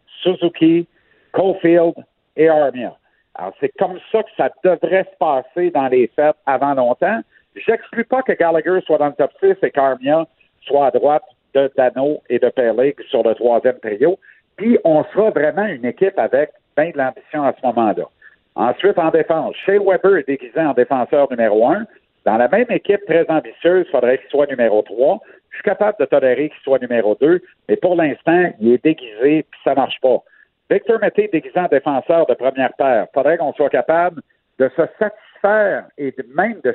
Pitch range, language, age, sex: 145-210 Hz, French, 60-79, male